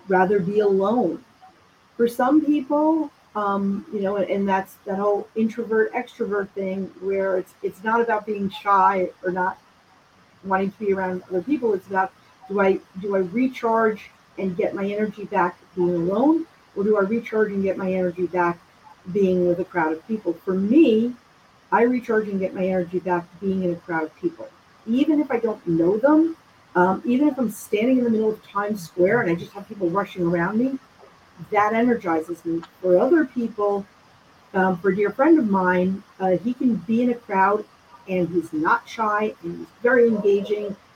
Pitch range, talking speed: 185-230 Hz, 190 wpm